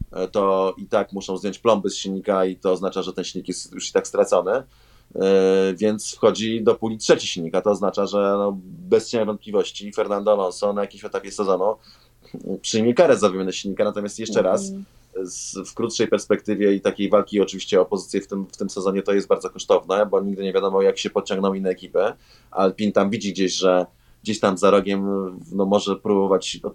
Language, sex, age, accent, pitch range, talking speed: Polish, male, 20-39, native, 95-115 Hz, 195 wpm